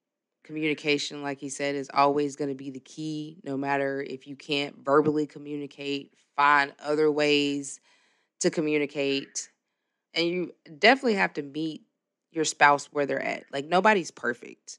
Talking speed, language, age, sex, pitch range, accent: 150 wpm, English, 20-39, female, 140-155 Hz, American